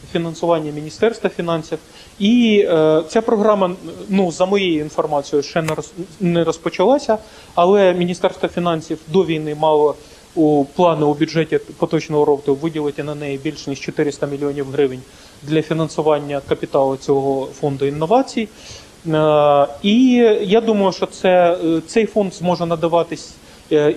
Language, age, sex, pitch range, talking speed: Ukrainian, 30-49, male, 150-185 Hz, 135 wpm